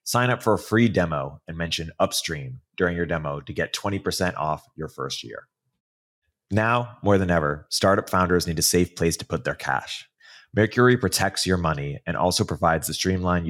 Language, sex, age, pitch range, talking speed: English, male, 30-49, 80-100 Hz, 185 wpm